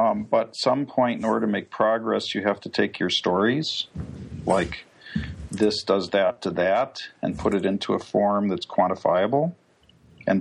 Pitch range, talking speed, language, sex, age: 100-115 Hz, 175 wpm, English, male, 50-69